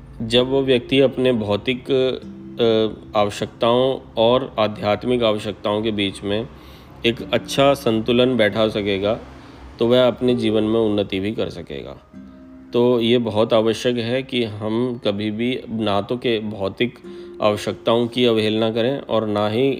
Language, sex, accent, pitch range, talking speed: Hindi, male, native, 100-120 Hz, 140 wpm